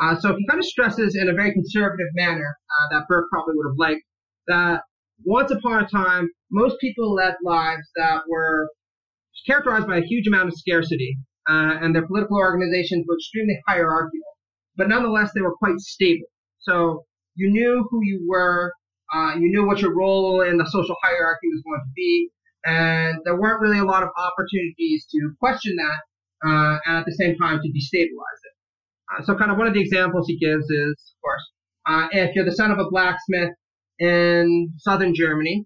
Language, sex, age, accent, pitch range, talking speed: English, male, 30-49, American, 160-195 Hz, 190 wpm